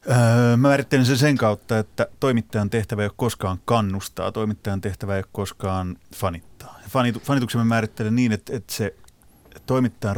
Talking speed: 165 wpm